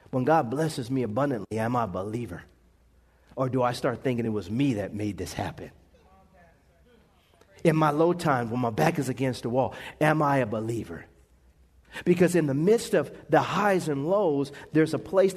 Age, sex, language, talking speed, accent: 50-69, male, English, 185 wpm, American